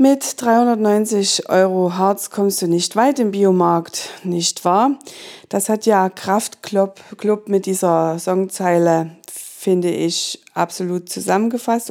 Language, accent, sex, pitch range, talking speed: German, German, female, 180-215 Hz, 120 wpm